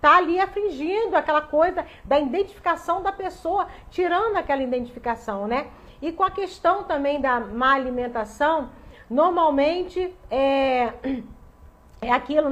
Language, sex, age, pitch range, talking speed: Portuguese, female, 40-59, 250-315 Hz, 110 wpm